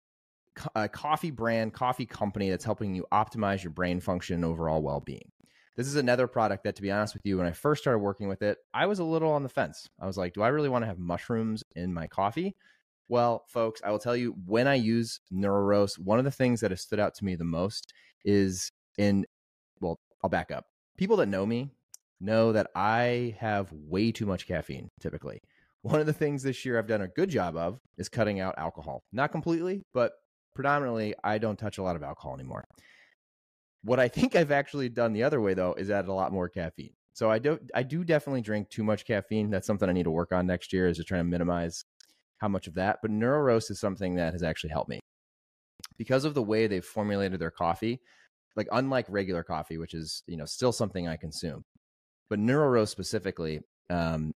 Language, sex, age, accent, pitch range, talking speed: English, male, 30-49, American, 90-120 Hz, 220 wpm